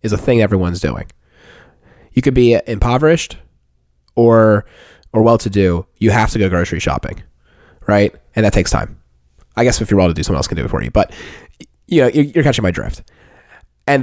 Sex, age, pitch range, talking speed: male, 20-39, 90-125 Hz, 185 wpm